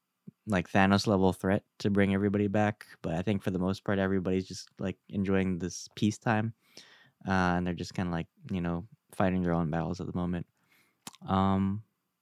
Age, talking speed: 10-29, 185 wpm